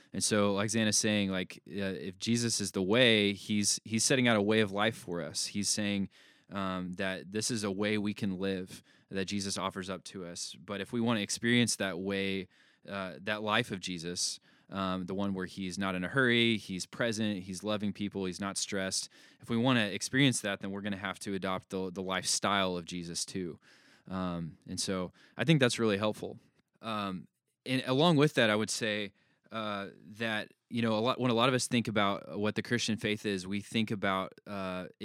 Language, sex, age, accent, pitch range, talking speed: English, male, 20-39, American, 95-110 Hz, 215 wpm